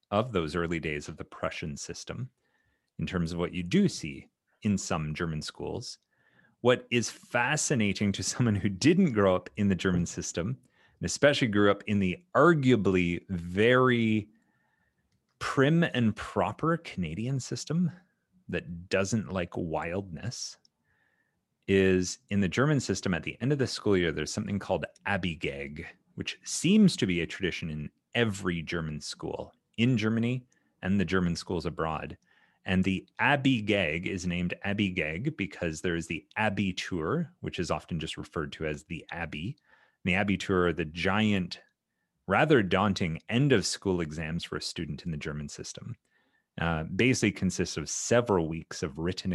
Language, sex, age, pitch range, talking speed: English, male, 30-49, 85-115 Hz, 160 wpm